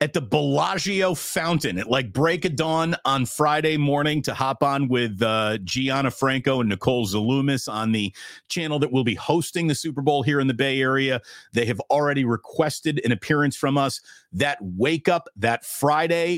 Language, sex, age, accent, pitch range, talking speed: English, male, 40-59, American, 120-155 Hz, 185 wpm